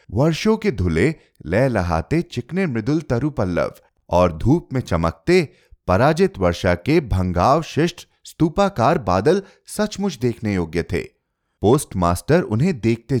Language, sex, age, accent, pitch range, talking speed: Hindi, male, 30-49, native, 90-150 Hz, 105 wpm